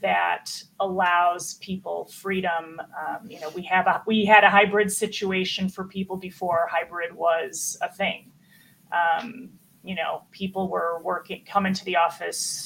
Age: 30-49